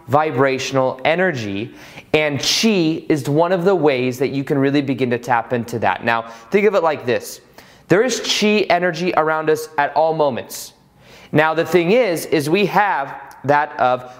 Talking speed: 180 wpm